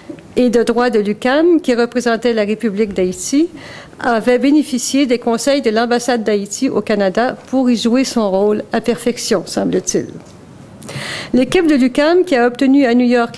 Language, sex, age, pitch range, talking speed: French, female, 50-69, 210-255 Hz, 160 wpm